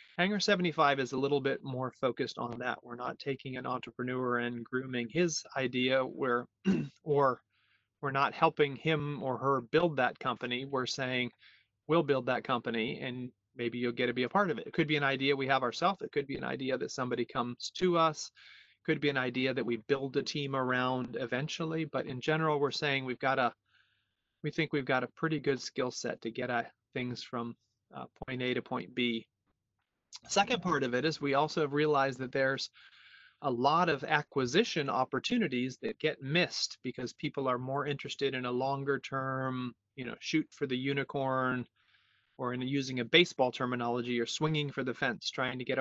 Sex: male